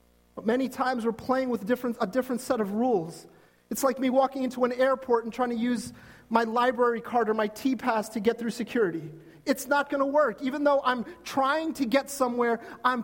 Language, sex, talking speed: English, male, 210 wpm